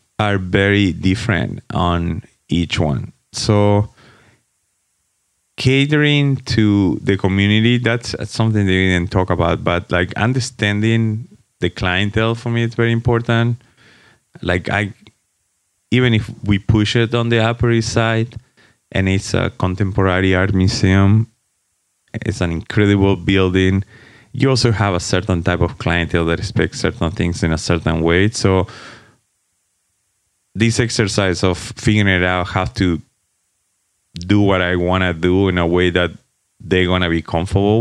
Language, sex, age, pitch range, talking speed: English, male, 30-49, 90-115 Hz, 140 wpm